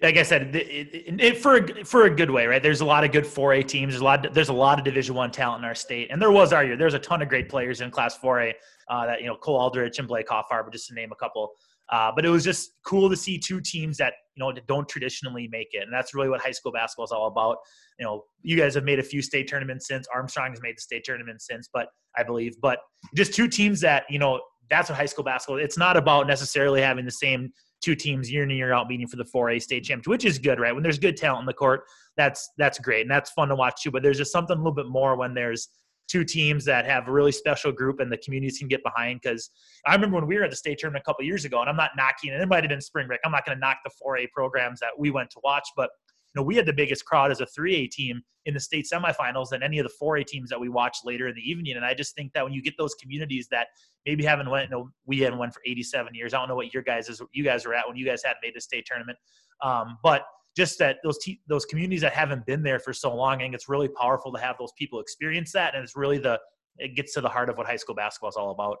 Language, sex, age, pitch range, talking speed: English, male, 30-49, 125-150 Hz, 295 wpm